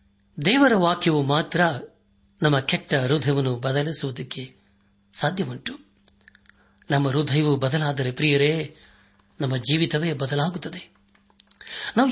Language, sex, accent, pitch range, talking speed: Kannada, male, native, 130-165 Hz, 80 wpm